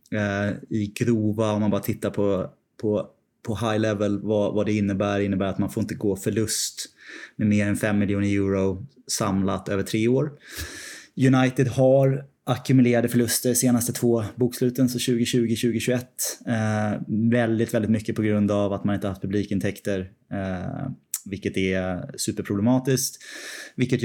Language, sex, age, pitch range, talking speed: Swedish, male, 20-39, 100-115 Hz, 150 wpm